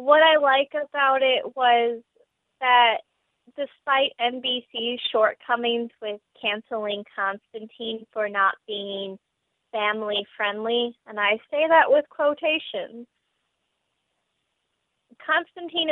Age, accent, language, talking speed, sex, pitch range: 20-39, American, English, 90 wpm, female, 210-245 Hz